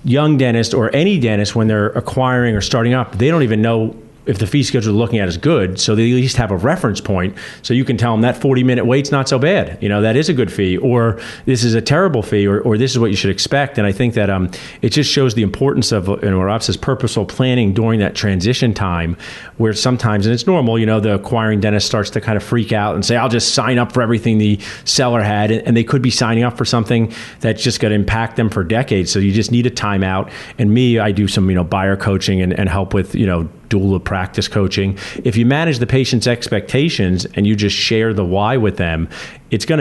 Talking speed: 250 wpm